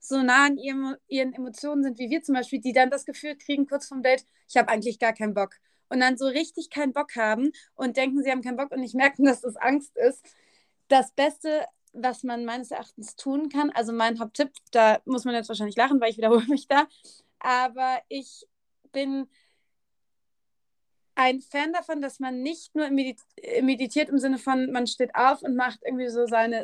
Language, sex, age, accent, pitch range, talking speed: German, female, 30-49, German, 240-280 Hz, 200 wpm